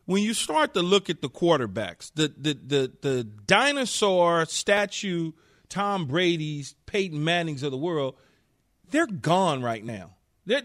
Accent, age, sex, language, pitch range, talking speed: American, 40-59, male, English, 160-245 Hz, 145 wpm